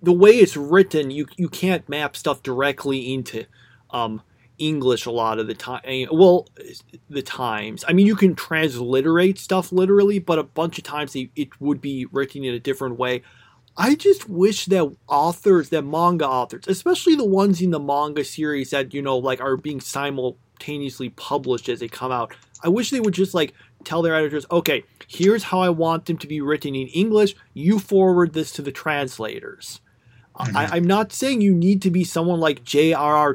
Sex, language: male, English